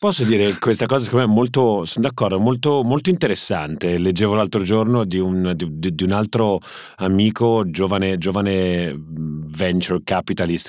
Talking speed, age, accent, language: 135 wpm, 30-49, native, Italian